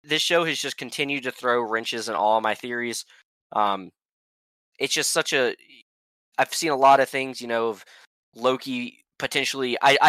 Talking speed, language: 170 wpm, English